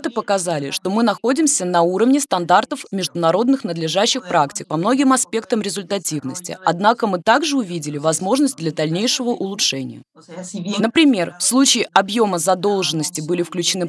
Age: 20-39